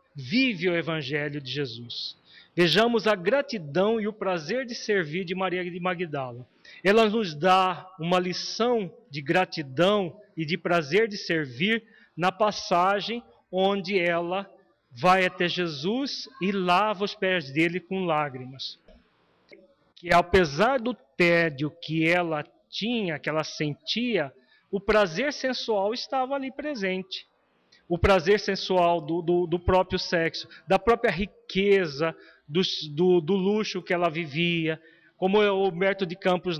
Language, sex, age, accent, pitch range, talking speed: Portuguese, male, 40-59, Brazilian, 170-215 Hz, 135 wpm